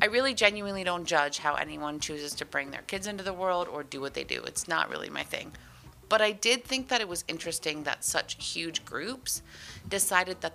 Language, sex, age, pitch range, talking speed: English, female, 30-49, 155-195 Hz, 220 wpm